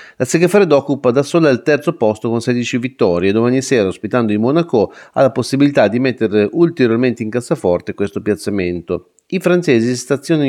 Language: Italian